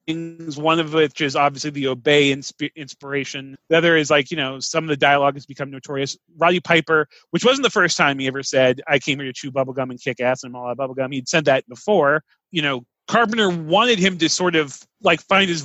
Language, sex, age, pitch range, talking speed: English, male, 30-49, 140-180 Hz, 240 wpm